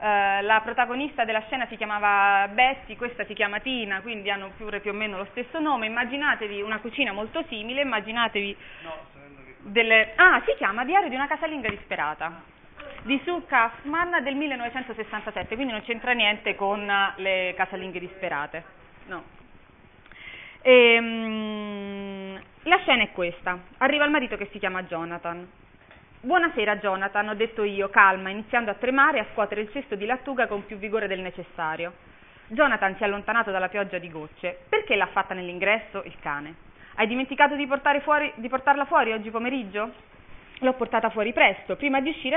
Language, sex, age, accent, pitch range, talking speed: Italian, female, 30-49, native, 195-260 Hz, 155 wpm